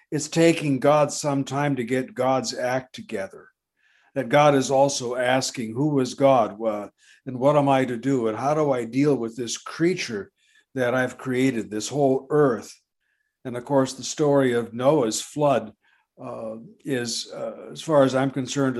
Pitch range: 125-150 Hz